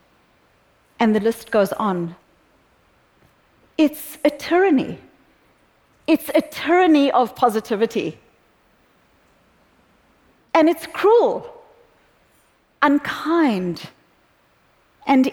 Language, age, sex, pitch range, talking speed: English, 40-59, female, 205-265 Hz, 70 wpm